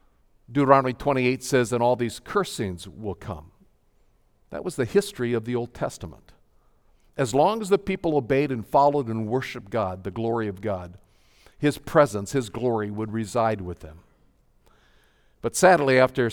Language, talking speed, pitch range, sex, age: English, 160 wpm, 105-135 Hz, male, 50-69